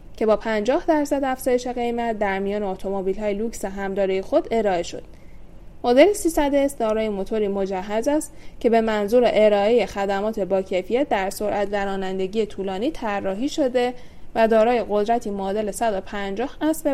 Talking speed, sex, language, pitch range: 145 wpm, female, Persian, 195-245 Hz